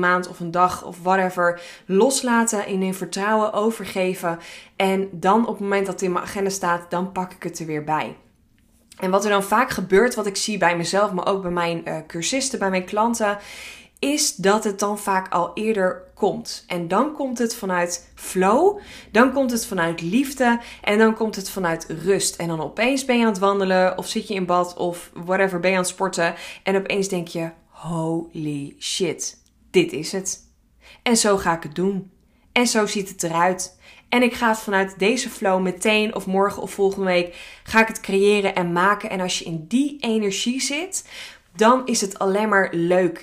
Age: 20-39